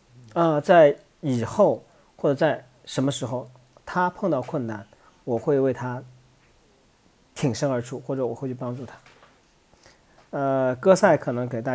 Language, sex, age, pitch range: Chinese, male, 40-59, 125-155 Hz